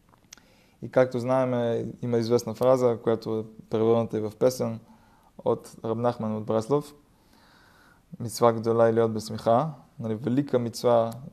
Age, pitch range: 20-39, 110-125 Hz